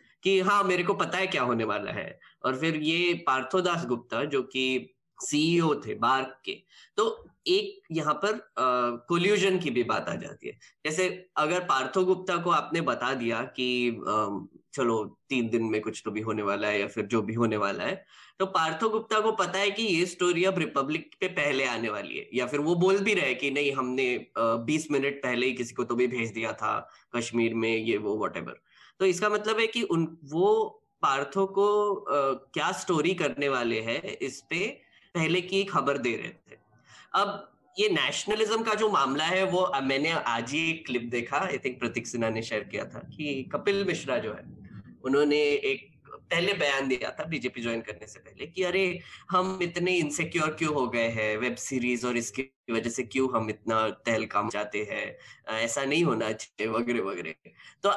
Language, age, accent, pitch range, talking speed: Hindi, 10-29, native, 120-185 Hz, 160 wpm